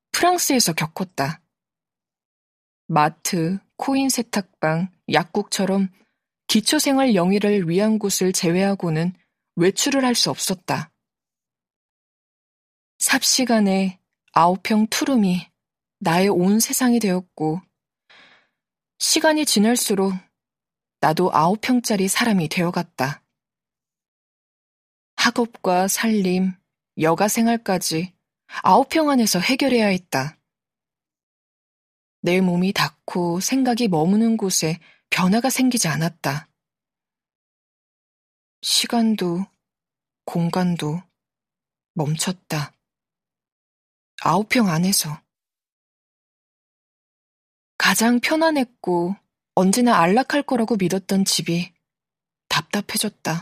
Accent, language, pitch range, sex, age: native, Korean, 170-230 Hz, female, 20-39